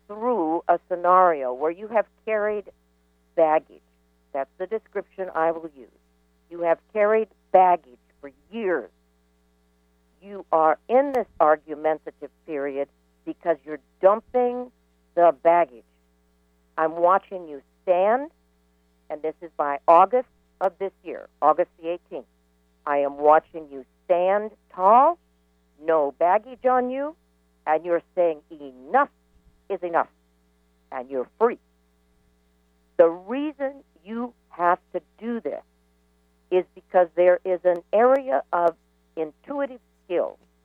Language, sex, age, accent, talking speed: English, female, 60-79, American, 120 wpm